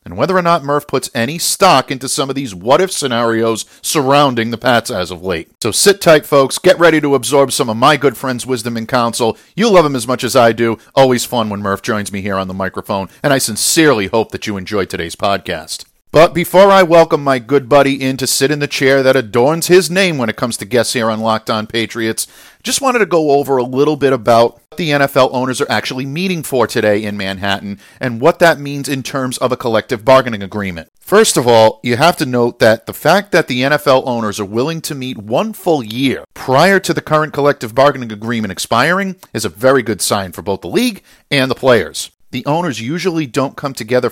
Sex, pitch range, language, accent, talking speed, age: male, 115-150 Hz, English, American, 230 wpm, 50-69